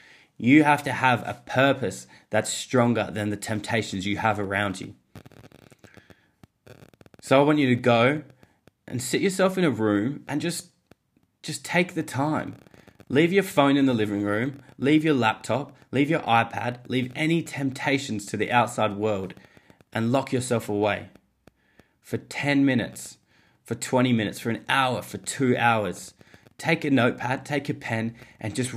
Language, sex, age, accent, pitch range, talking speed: English, male, 20-39, Australian, 110-135 Hz, 160 wpm